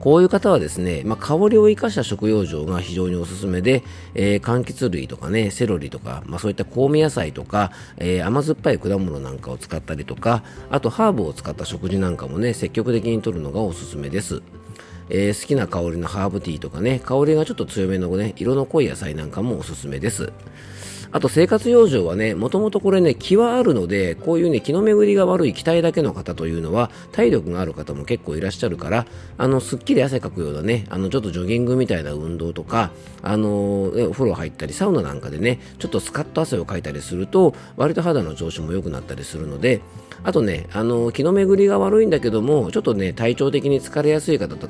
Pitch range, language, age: 90-145 Hz, Japanese, 40-59